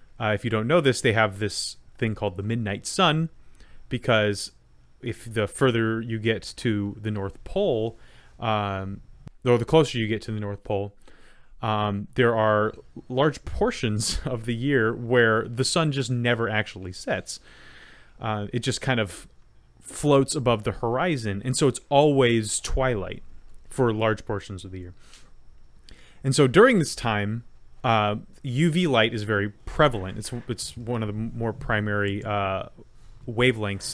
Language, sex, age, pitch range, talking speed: English, male, 30-49, 105-125 Hz, 160 wpm